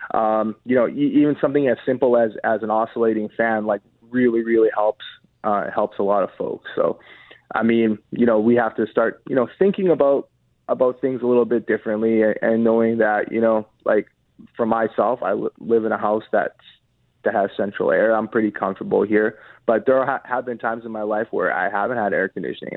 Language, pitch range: English, 110-130 Hz